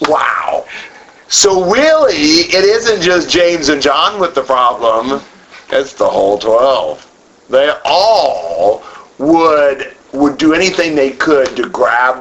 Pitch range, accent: 115-195 Hz, American